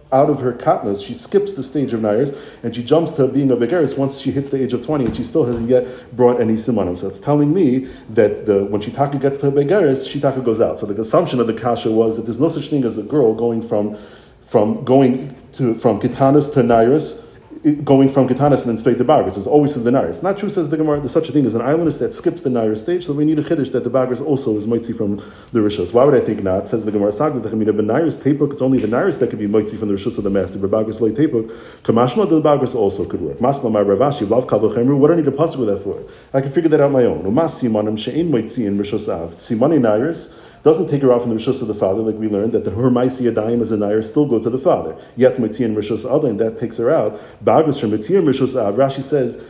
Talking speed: 260 wpm